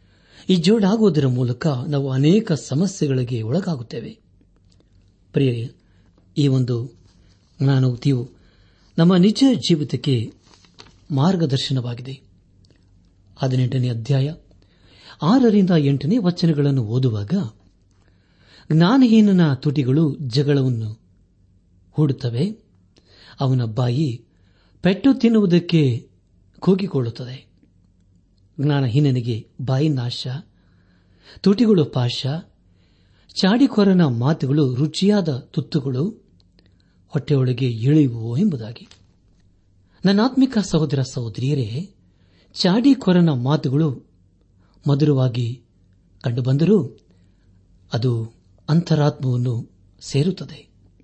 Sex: male